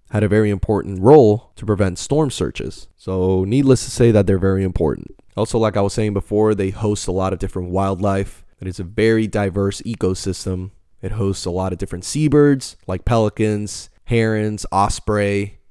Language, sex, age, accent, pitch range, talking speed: English, male, 20-39, American, 95-110 Hz, 175 wpm